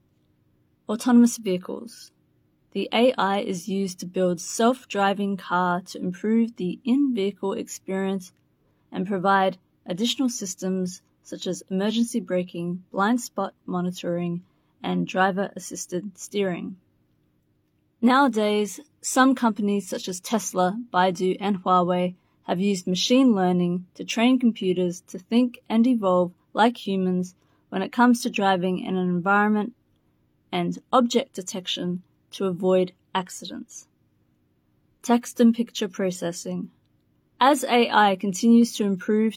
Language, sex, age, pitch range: Chinese, female, 20-39, 185-230 Hz